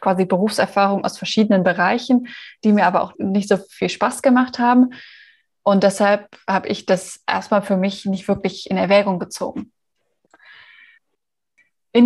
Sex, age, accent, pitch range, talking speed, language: female, 20-39, German, 200-240 Hz, 145 wpm, German